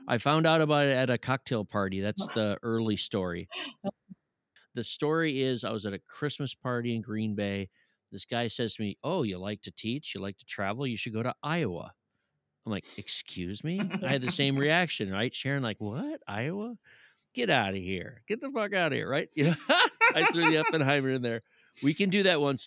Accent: American